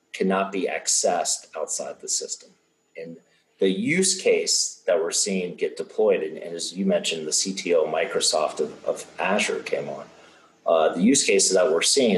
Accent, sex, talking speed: American, male, 170 wpm